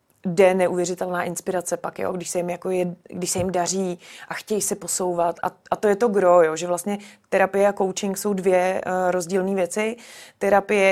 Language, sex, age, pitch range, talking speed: Czech, female, 30-49, 175-190 Hz, 200 wpm